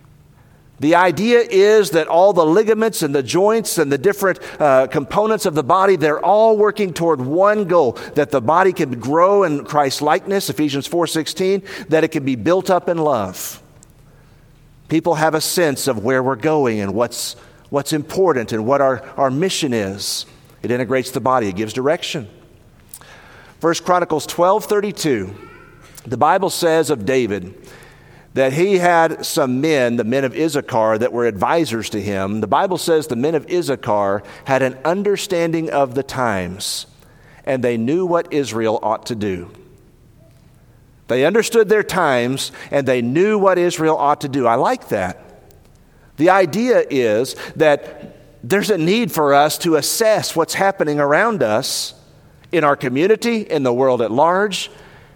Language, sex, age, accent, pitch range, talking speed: English, male, 50-69, American, 130-175 Hz, 160 wpm